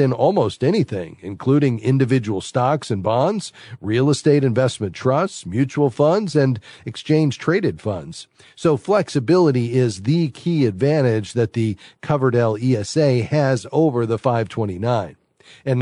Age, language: 40-59, English